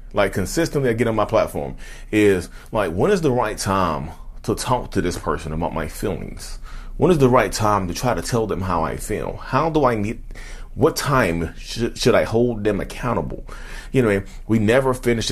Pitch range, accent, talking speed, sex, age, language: 85-115 Hz, American, 205 wpm, male, 30-49, English